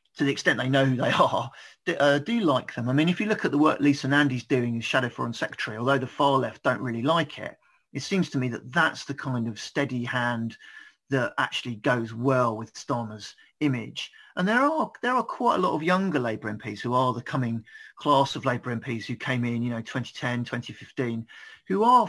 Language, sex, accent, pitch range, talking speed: English, male, British, 115-140 Hz, 225 wpm